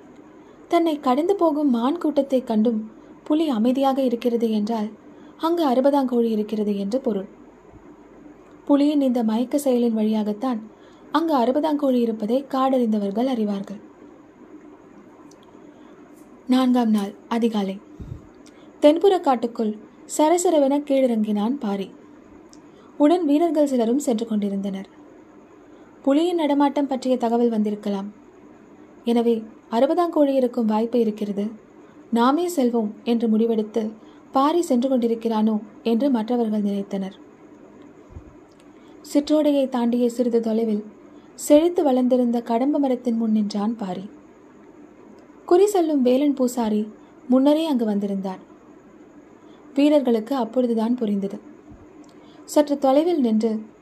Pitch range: 230-315 Hz